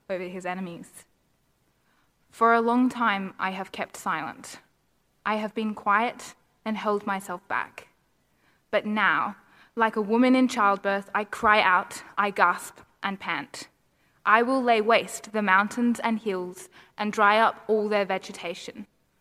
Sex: female